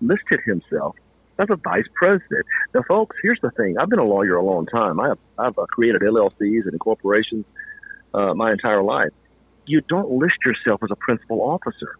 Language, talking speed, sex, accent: English, 185 wpm, male, American